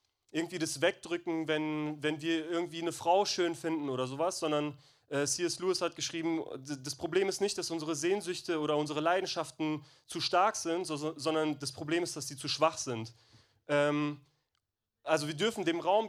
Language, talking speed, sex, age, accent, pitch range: German, 180 wpm, male, 30-49, German, 150-180 Hz